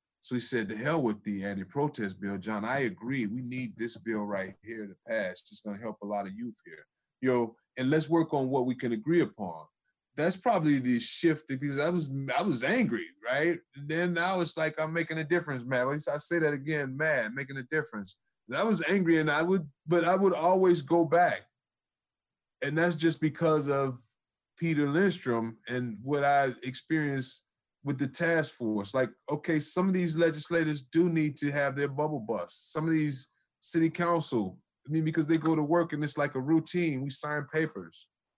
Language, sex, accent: English, male, American